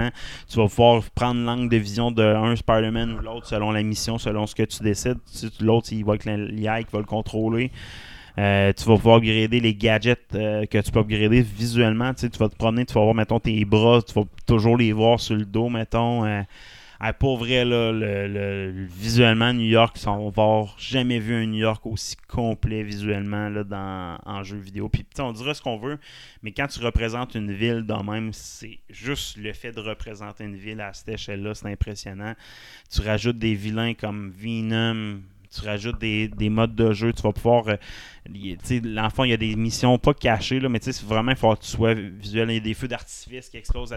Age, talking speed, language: 30-49, 225 wpm, French